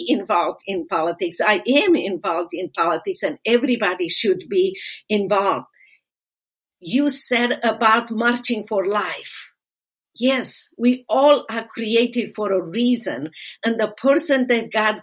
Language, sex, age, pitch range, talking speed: English, female, 50-69, 205-260 Hz, 130 wpm